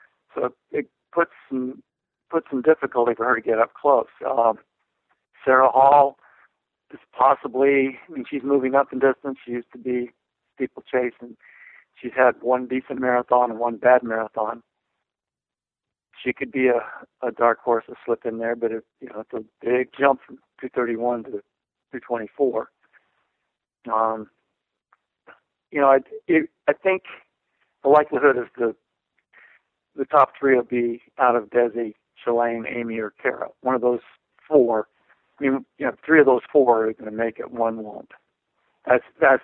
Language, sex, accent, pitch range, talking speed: English, male, American, 115-135 Hz, 160 wpm